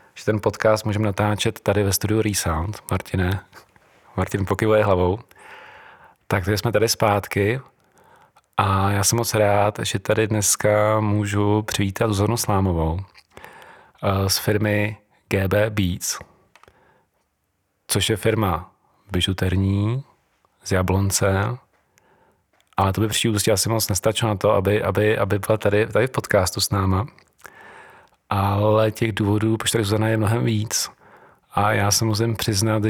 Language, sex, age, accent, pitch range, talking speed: Czech, male, 40-59, native, 100-110 Hz, 130 wpm